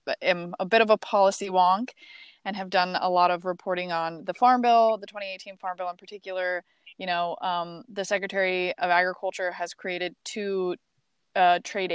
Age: 20-39